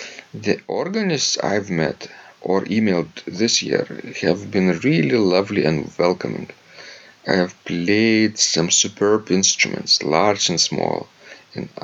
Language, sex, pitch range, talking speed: English, male, 90-105 Hz, 120 wpm